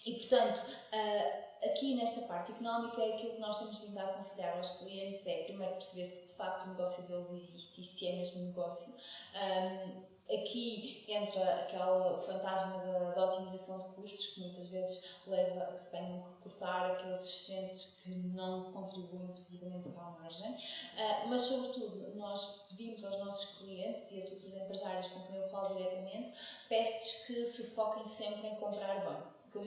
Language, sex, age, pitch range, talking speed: Portuguese, female, 20-39, 185-230 Hz, 170 wpm